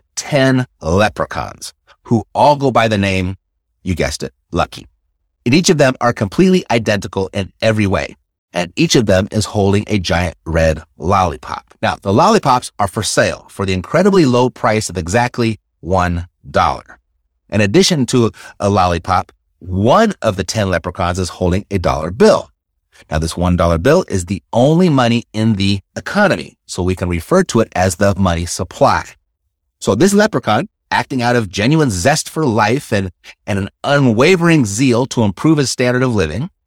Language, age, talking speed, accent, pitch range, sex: English, 30-49, 170 wpm, American, 90-135 Hz, male